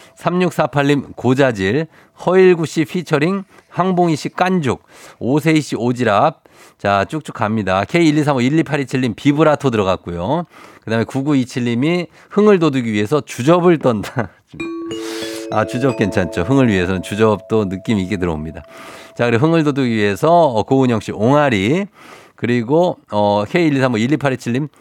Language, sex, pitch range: Korean, male, 110-155 Hz